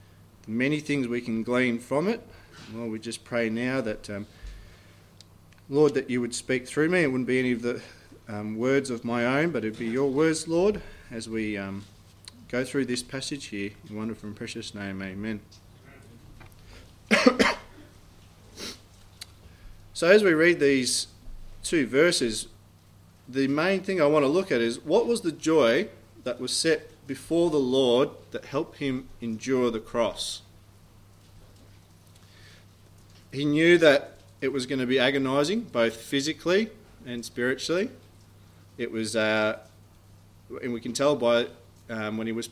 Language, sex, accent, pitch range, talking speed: English, male, Australian, 100-130 Hz, 155 wpm